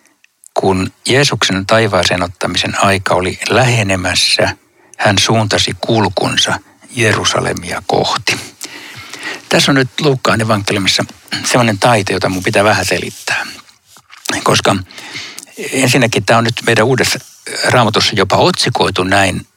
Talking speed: 105 wpm